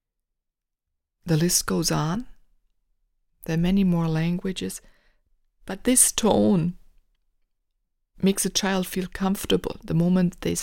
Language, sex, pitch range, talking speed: English, female, 165-195 Hz, 115 wpm